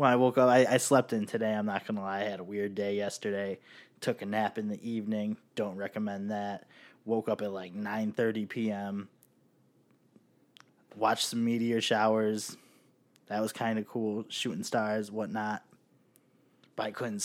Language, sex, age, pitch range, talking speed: English, male, 20-39, 105-135 Hz, 175 wpm